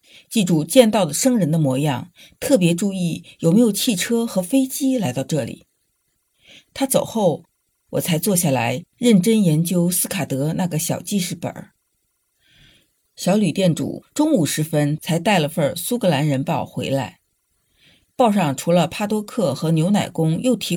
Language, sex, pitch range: Chinese, female, 150-210 Hz